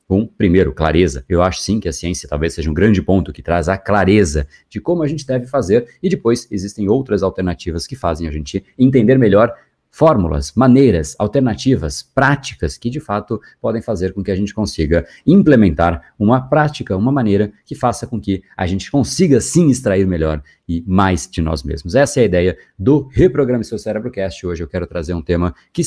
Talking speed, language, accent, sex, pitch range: 195 wpm, Portuguese, Brazilian, male, 85-125 Hz